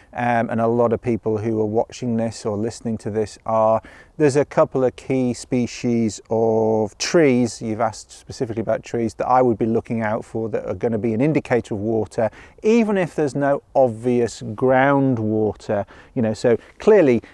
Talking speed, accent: 185 wpm, British